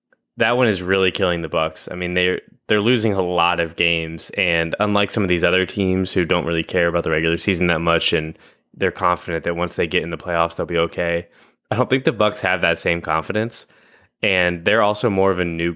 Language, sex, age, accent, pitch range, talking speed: English, male, 10-29, American, 85-95 Hz, 235 wpm